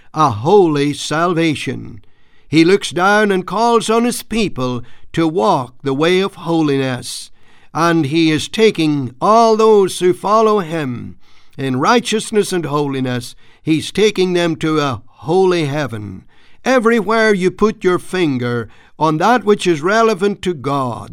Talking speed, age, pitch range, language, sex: 140 wpm, 60-79, 135-200 Hz, English, male